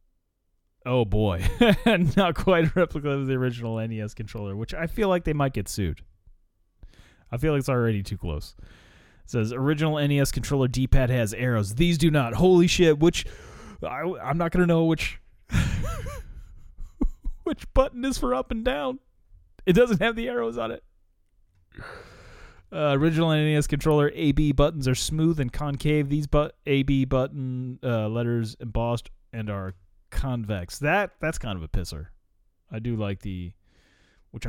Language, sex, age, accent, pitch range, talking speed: English, male, 30-49, American, 95-145 Hz, 160 wpm